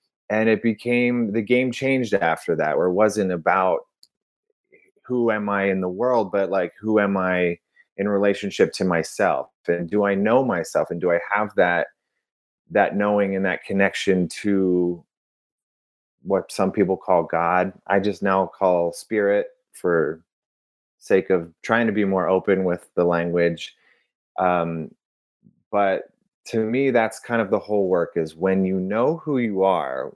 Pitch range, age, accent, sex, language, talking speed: 90-115 Hz, 30-49, American, male, English, 160 wpm